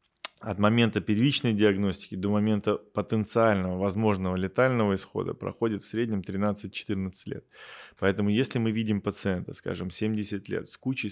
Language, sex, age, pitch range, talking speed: Russian, male, 20-39, 95-115 Hz, 135 wpm